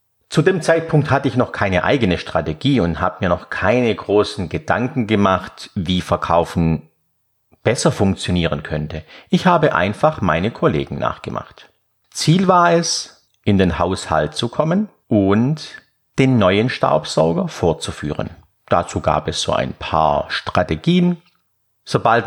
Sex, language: male, German